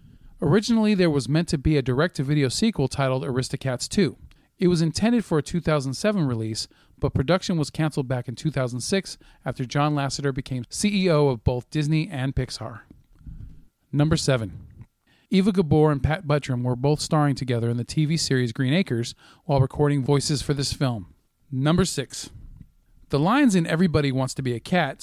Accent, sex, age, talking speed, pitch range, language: American, male, 40-59, 170 wpm, 130-160 Hz, English